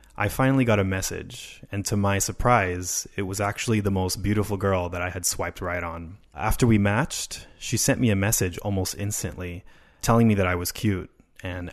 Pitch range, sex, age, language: 90-110 Hz, male, 20-39, Japanese